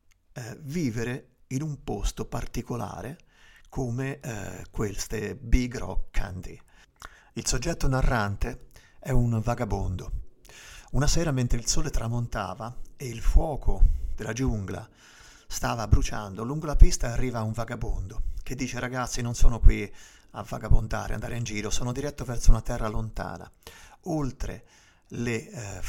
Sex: male